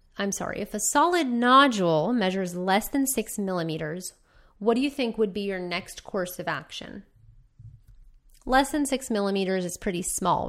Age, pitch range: 20-39, 170-225 Hz